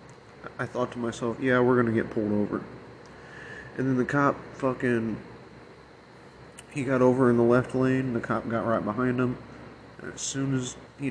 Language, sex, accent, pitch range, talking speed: English, male, American, 115-130 Hz, 185 wpm